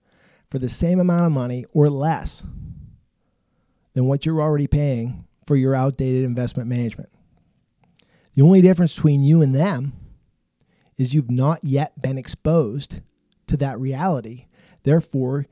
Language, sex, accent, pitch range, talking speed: English, male, American, 130-155 Hz, 135 wpm